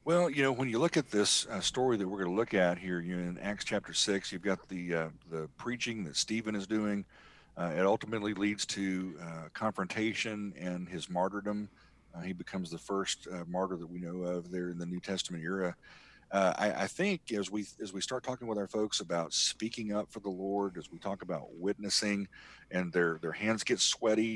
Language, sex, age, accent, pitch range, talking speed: English, male, 40-59, American, 90-110 Hz, 220 wpm